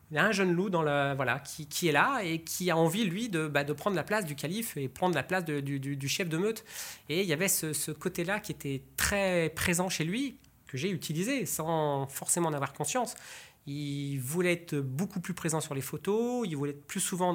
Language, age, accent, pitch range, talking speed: French, 30-49, French, 140-180 Hz, 250 wpm